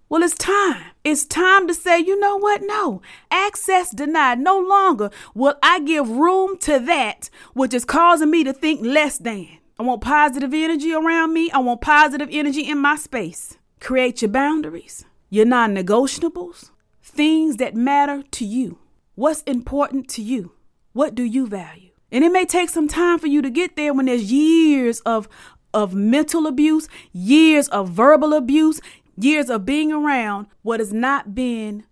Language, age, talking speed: English, 30-49, 170 wpm